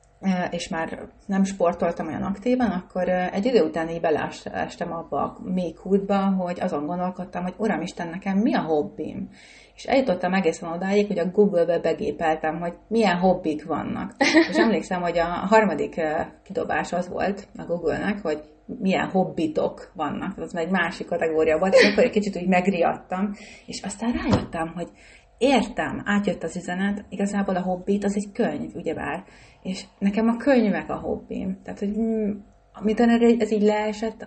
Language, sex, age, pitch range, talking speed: Hungarian, female, 30-49, 175-215 Hz, 165 wpm